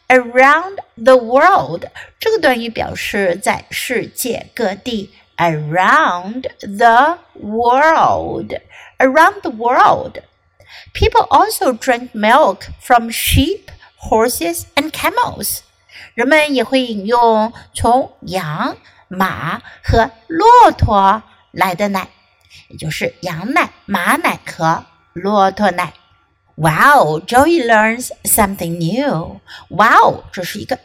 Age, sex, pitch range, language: 60-79, female, 195-280 Hz, Chinese